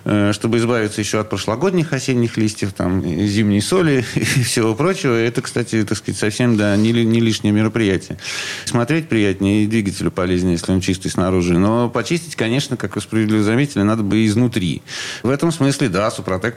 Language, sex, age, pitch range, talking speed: Russian, male, 40-59, 95-115 Hz, 165 wpm